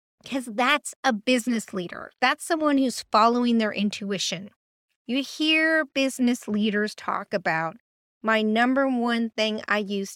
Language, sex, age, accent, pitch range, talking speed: English, female, 40-59, American, 215-295 Hz, 135 wpm